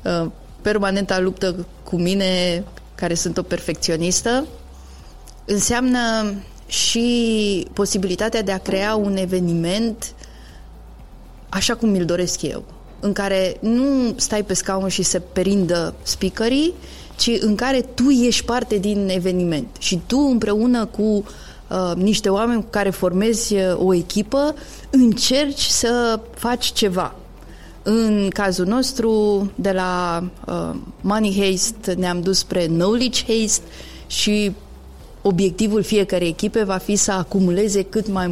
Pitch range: 175-220 Hz